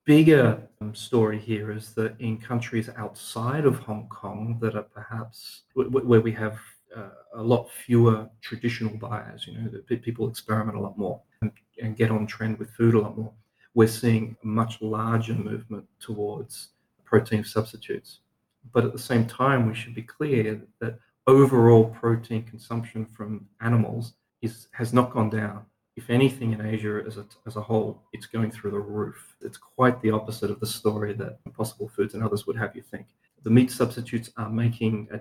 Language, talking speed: English, 175 wpm